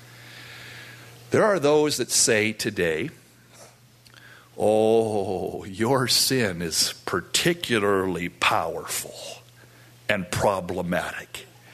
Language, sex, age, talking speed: English, male, 60-79, 70 wpm